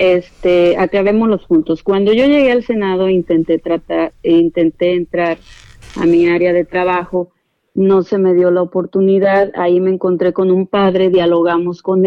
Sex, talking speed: female, 160 wpm